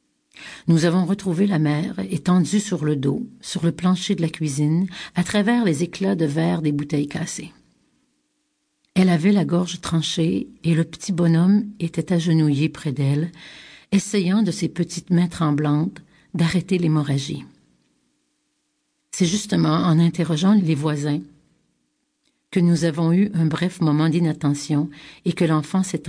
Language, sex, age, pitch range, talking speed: French, female, 50-69, 150-185 Hz, 145 wpm